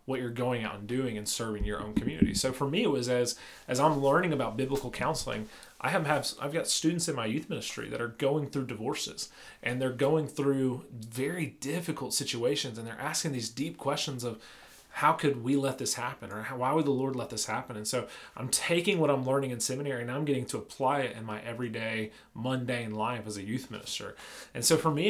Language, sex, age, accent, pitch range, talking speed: English, male, 30-49, American, 120-145 Hz, 225 wpm